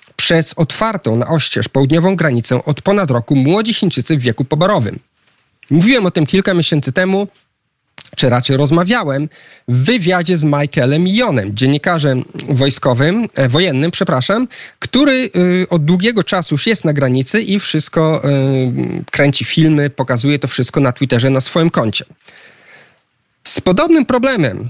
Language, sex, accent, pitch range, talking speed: Polish, male, native, 135-180 Hz, 140 wpm